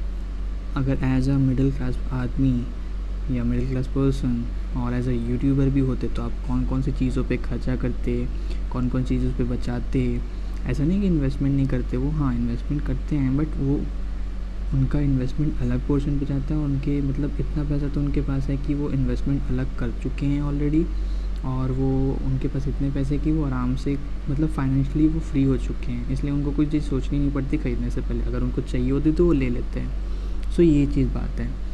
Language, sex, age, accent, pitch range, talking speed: English, male, 20-39, Indian, 120-140 Hz, 120 wpm